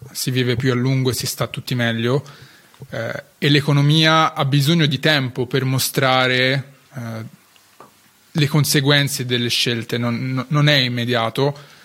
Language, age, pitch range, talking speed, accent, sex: Italian, 20-39, 120-145 Hz, 140 wpm, native, male